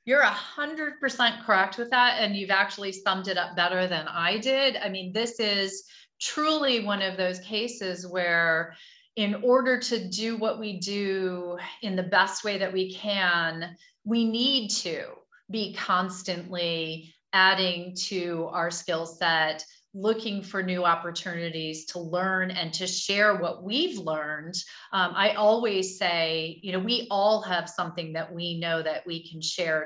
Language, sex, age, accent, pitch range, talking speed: English, female, 30-49, American, 170-215 Hz, 160 wpm